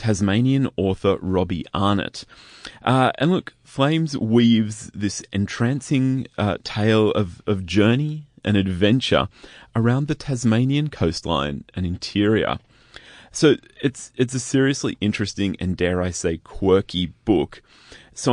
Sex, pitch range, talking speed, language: male, 100-135 Hz, 120 wpm, English